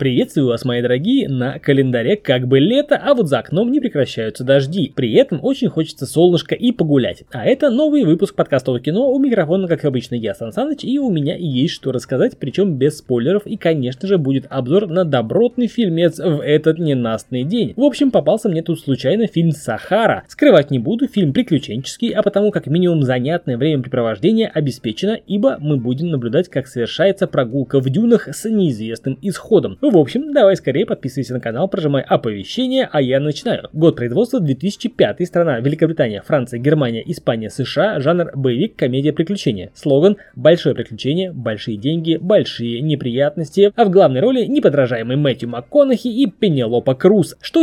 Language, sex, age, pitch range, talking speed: Russian, male, 20-39, 130-200 Hz, 165 wpm